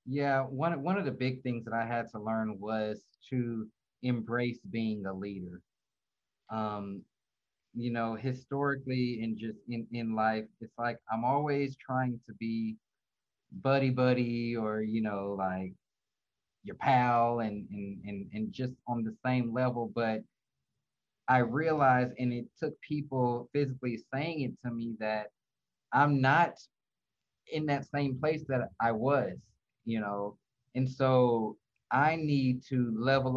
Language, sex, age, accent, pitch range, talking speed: English, male, 30-49, American, 120-145 Hz, 145 wpm